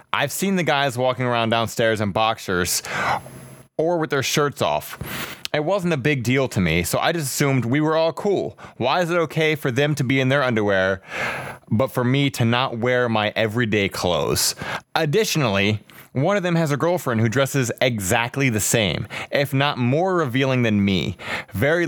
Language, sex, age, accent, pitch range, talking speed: English, male, 20-39, American, 115-150 Hz, 185 wpm